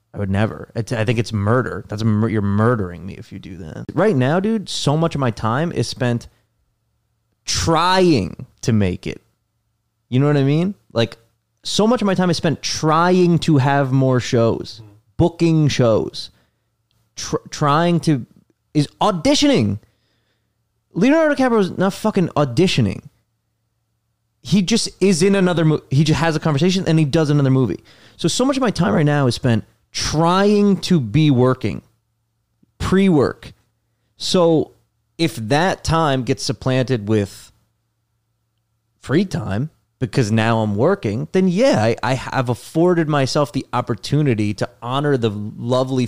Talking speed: 150 wpm